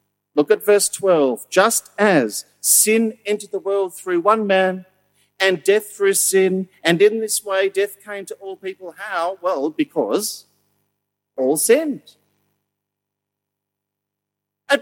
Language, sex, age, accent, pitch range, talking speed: English, male, 50-69, Australian, 140-225 Hz, 130 wpm